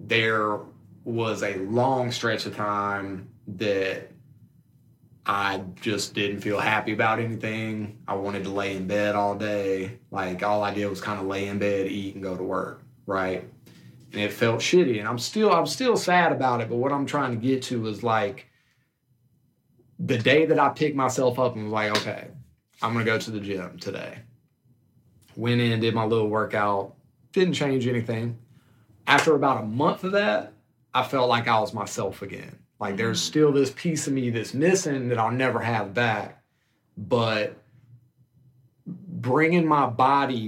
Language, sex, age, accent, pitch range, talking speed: English, male, 30-49, American, 105-130 Hz, 175 wpm